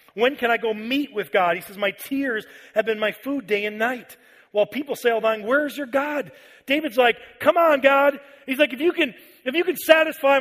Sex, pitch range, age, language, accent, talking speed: male, 190-240 Hz, 40-59, English, American, 220 wpm